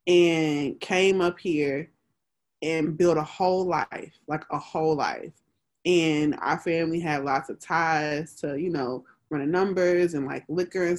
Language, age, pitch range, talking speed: English, 20-39, 155-180 Hz, 160 wpm